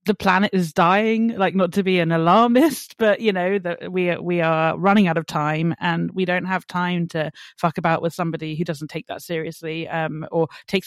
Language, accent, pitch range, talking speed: English, British, 170-195 Hz, 215 wpm